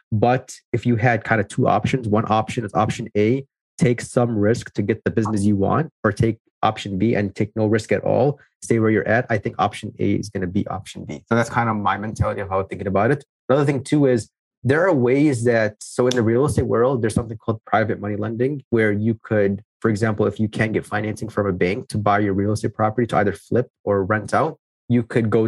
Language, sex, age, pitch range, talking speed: English, male, 30-49, 105-125 Hz, 250 wpm